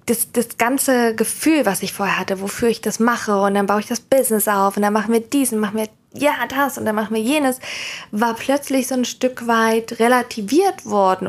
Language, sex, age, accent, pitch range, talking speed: German, female, 20-39, German, 200-245 Hz, 220 wpm